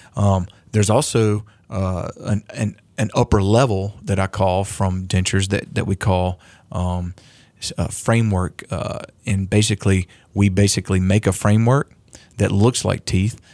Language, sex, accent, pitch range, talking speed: English, male, American, 95-115 Hz, 135 wpm